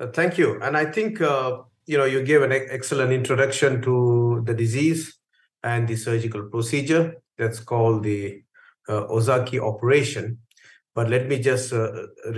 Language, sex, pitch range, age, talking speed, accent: English, male, 110-135 Hz, 50-69, 150 wpm, Indian